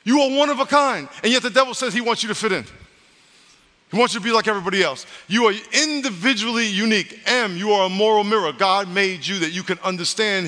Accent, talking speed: American, 240 wpm